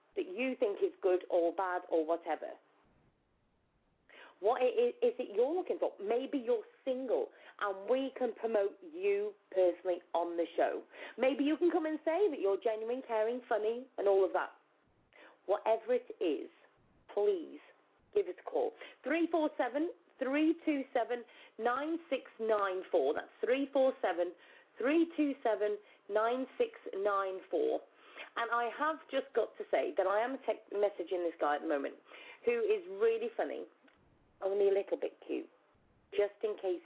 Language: English